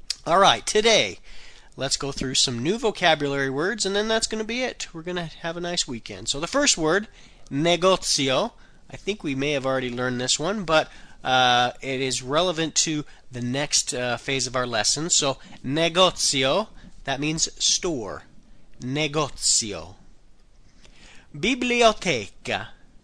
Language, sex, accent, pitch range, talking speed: Italian, male, American, 120-180 Hz, 150 wpm